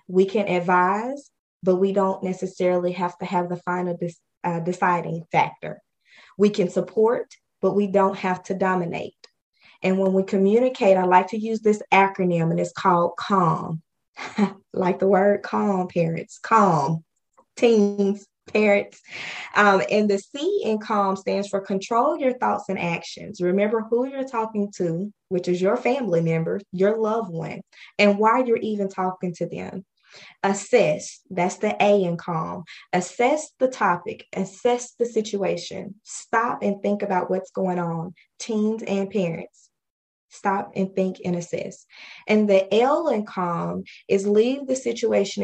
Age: 20-39